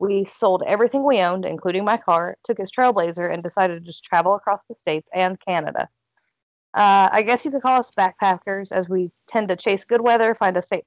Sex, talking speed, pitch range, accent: female, 215 wpm, 180-220 Hz, American